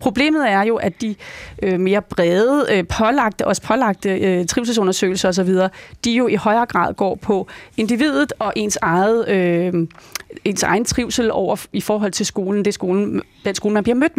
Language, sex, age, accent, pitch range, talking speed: Danish, female, 30-49, native, 185-220 Hz, 200 wpm